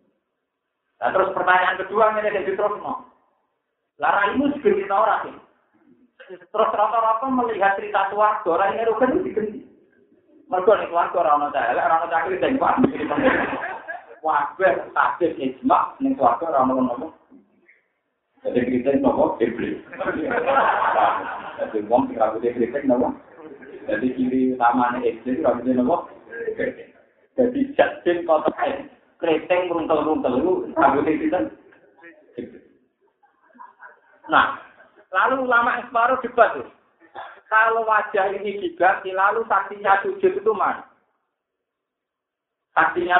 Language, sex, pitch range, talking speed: Indonesian, male, 160-255 Hz, 60 wpm